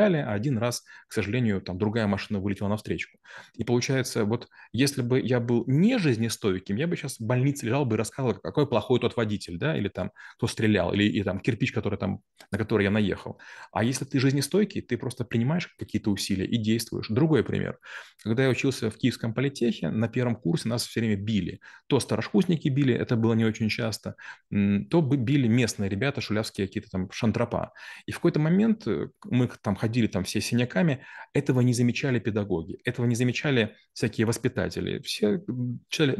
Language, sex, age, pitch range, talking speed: Russian, male, 30-49, 105-135 Hz, 180 wpm